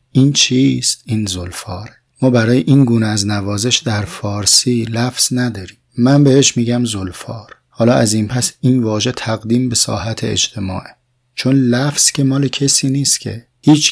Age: 30-49